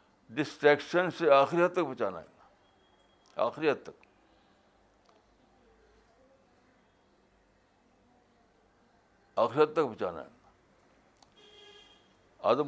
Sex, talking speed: male, 60 wpm